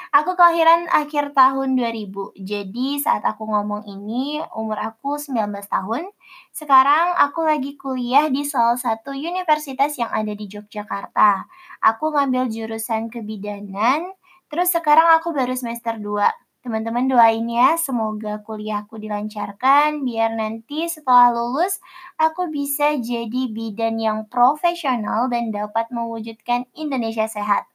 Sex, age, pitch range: female, 20-39, 220-300 Hz